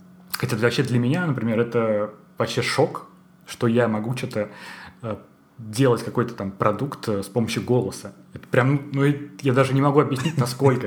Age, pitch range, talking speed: 20-39, 115-145 Hz, 155 wpm